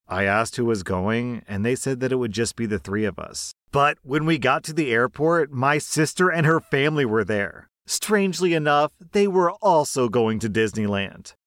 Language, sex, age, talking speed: English, male, 40-59, 205 wpm